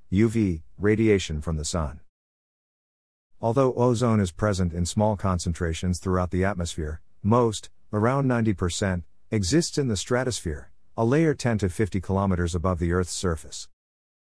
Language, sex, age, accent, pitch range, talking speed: English, male, 50-69, American, 90-115 Hz, 135 wpm